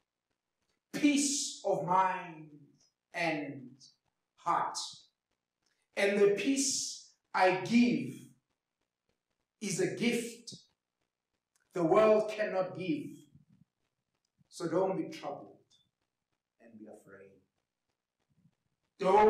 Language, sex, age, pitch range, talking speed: English, male, 50-69, 180-215 Hz, 80 wpm